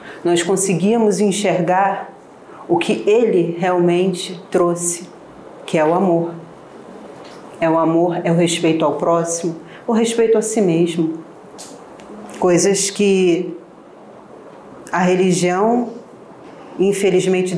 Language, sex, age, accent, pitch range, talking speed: Portuguese, female, 40-59, Brazilian, 170-205 Hz, 100 wpm